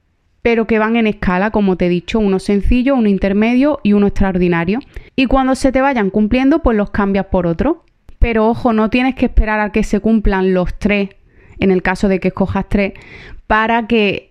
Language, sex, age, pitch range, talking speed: Spanish, female, 30-49, 190-225 Hz, 200 wpm